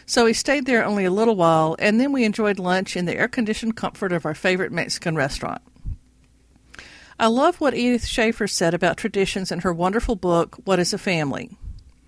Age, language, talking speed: 50-69, English, 190 wpm